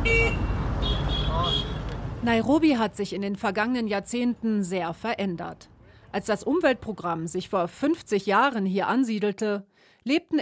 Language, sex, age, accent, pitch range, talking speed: German, female, 40-59, German, 175-235 Hz, 110 wpm